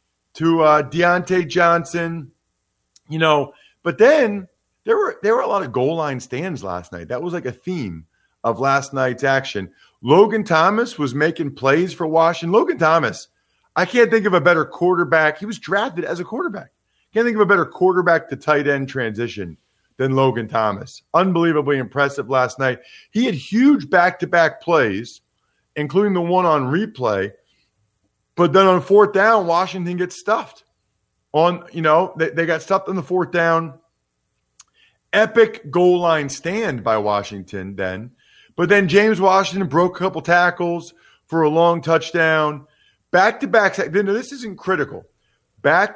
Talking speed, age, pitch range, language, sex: 160 wpm, 40-59, 135-185 Hz, English, male